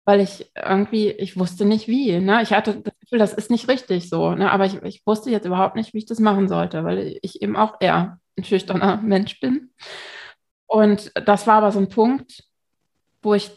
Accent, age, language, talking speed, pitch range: German, 20-39, German, 205 wpm, 180-205 Hz